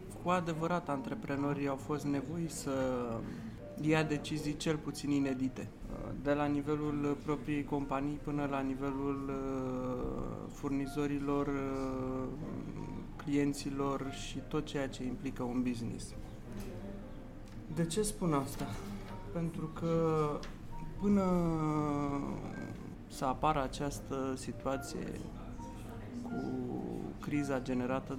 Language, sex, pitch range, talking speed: Romanian, male, 125-155 Hz, 90 wpm